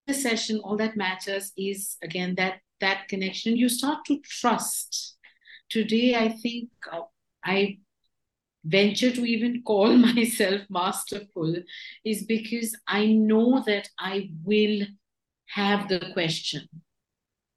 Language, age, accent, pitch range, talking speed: English, 50-69, Indian, 185-220 Hz, 115 wpm